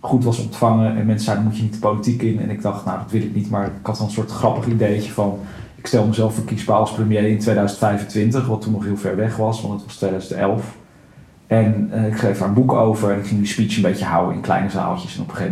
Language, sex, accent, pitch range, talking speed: Dutch, male, Dutch, 105-120 Hz, 275 wpm